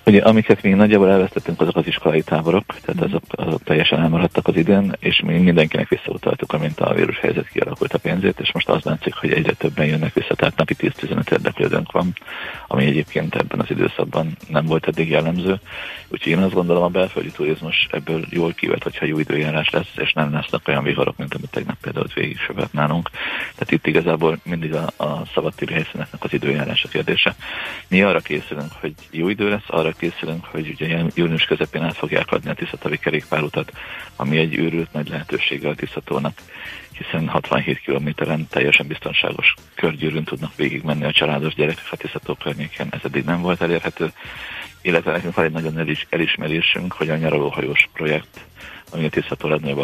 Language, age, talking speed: Hungarian, 40-59, 175 wpm